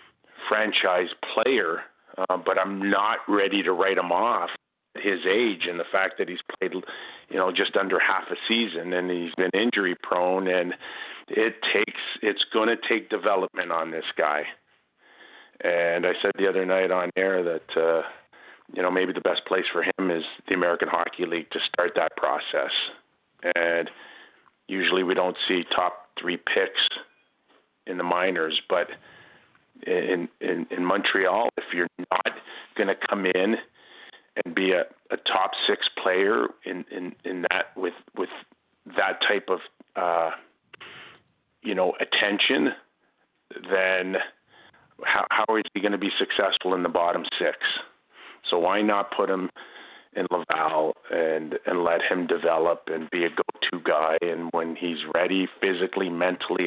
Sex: male